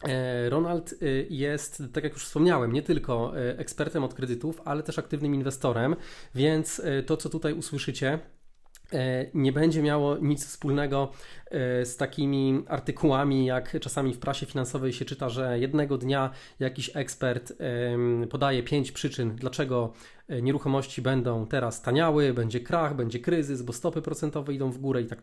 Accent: native